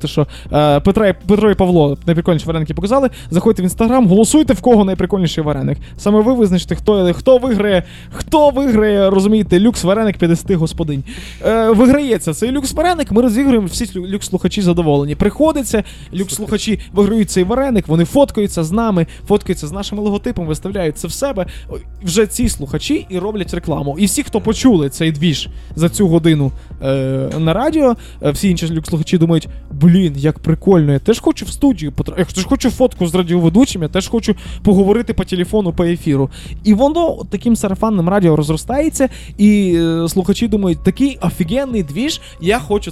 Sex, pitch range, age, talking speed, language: male, 165-220 Hz, 20-39, 165 wpm, Ukrainian